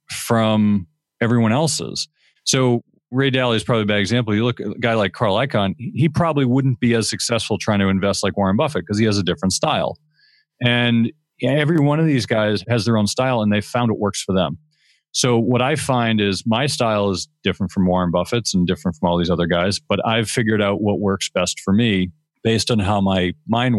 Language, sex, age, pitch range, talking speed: English, male, 40-59, 95-120 Hz, 220 wpm